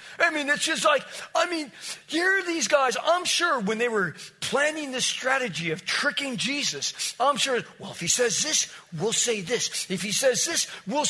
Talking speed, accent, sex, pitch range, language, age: 200 wpm, American, male, 180-285 Hz, English, 50-69